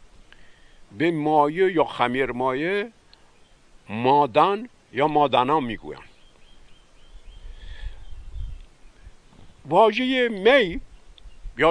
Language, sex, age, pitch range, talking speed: Persian, male, 60-79, 120-175 Hz, 60 wpm